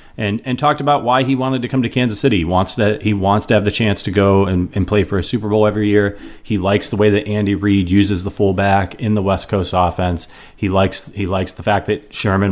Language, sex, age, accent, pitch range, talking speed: English, male, 30-49, American, 90-110 Hz, 265 wpm